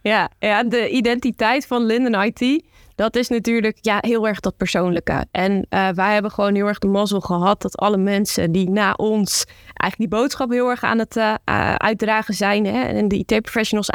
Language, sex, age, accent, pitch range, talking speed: Dutch, female, 20-39, Dutch, 200-230 Hz, 195 wpm